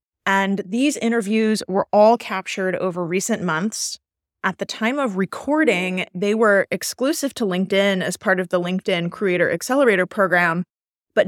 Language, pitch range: English, 175-220 Hz